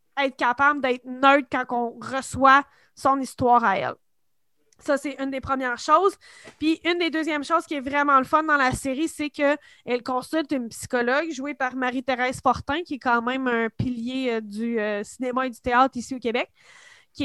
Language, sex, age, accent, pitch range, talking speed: French, female, 20-39, Canadian, 250-300 Hz, 190 wpm